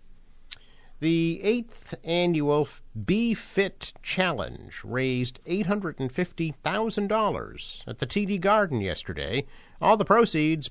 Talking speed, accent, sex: 90 wpm, American, male